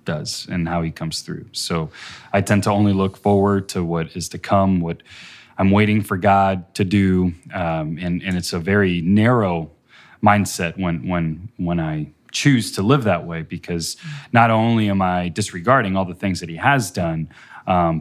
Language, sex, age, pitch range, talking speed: English, male, 30-49, 85-105 Hz, 185 wpm